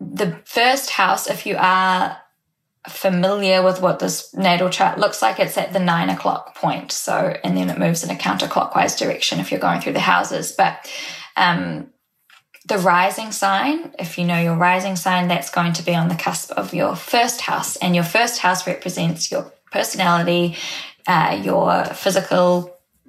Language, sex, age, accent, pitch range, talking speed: English, female, 10-29, Australian, 170-195 Hz, 175 wpm